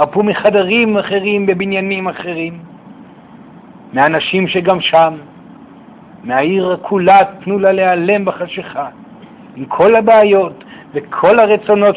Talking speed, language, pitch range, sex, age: 95 wpm, Hebrew, 180-220 Hz, male, 50-69